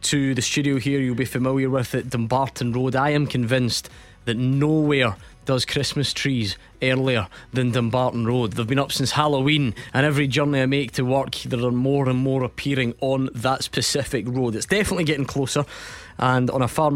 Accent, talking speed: British, 190 wpm